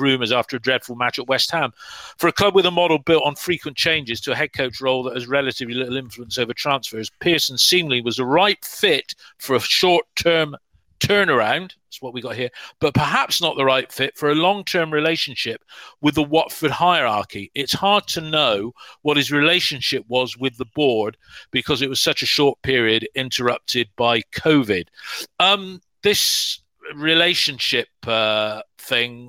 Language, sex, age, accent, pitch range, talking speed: English, male, 50-69, British, 115-155 Hz, 175 wpm